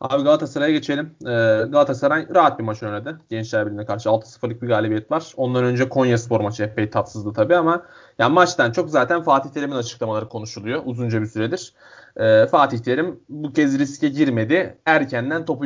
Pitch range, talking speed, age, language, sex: 115-145 Hz, 170 wpm, 30-49, Turkish, male